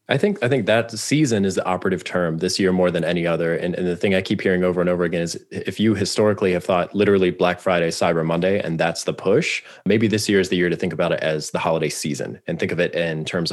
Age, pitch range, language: 20-39, 90-105 Hz, English